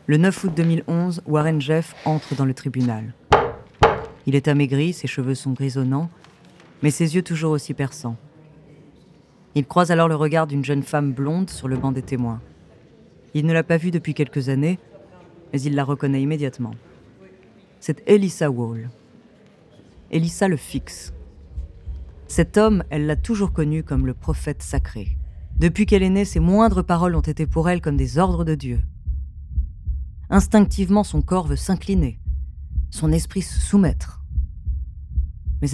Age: 30-49